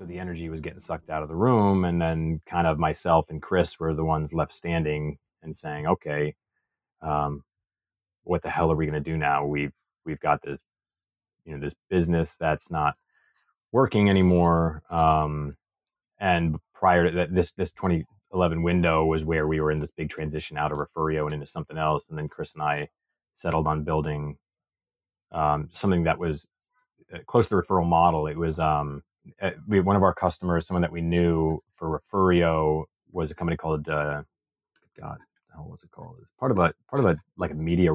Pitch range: 80-95 Hz